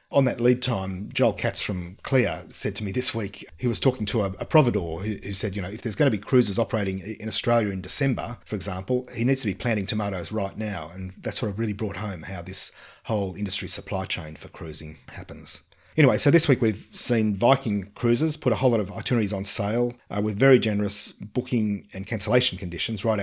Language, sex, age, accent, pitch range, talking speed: English, male, 40-59, Australian, 95-120 Hz, 225 wpm